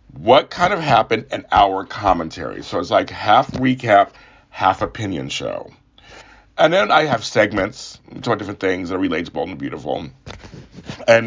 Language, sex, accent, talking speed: English, male, American, 160 wpm